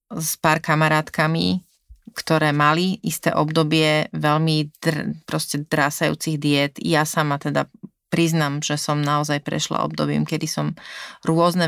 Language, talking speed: Slovak, 125 wpm